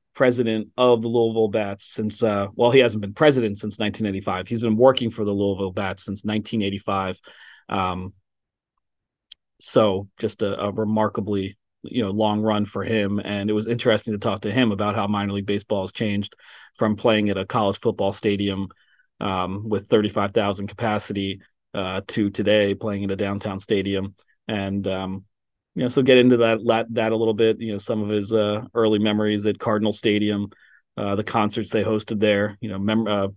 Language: English